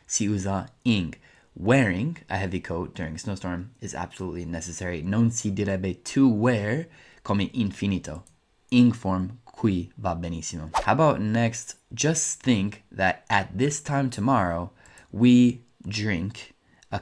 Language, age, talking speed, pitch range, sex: Italian, 20-39, 135 wpm, 95-125 Hz, male